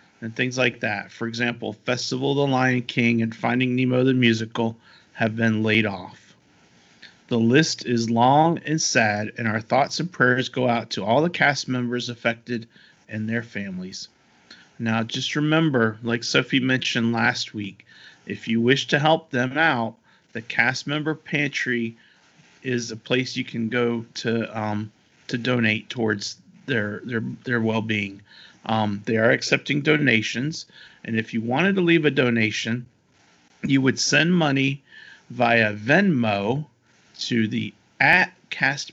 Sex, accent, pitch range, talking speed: male, American, 110-130 Hz, 155 wpm